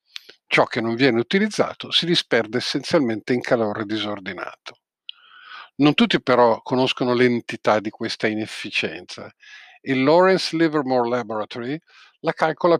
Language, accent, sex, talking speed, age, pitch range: Italian, native, male, 115 wpm, 50-69, 120-145 Hz